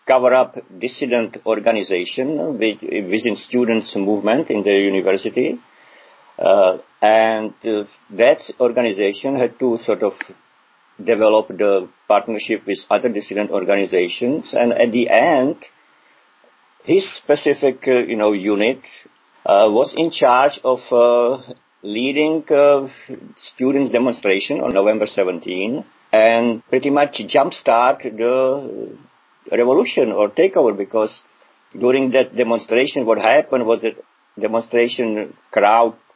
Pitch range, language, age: 105-125 Hz, English, 50-69